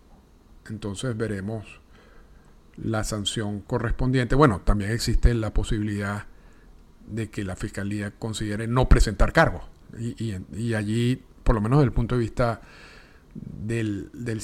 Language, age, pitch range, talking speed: Spanish, 50-69, 100-135 Hz, 135 wpm